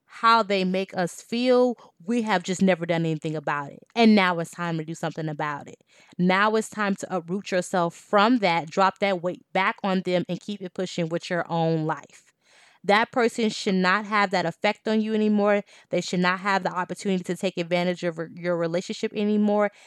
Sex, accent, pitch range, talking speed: female, American, 175-225 Hz, 200 wpm